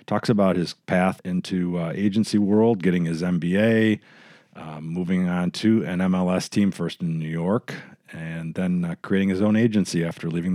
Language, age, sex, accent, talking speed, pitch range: English, 40-59, male, American, 175 wpm, 85-115 Hz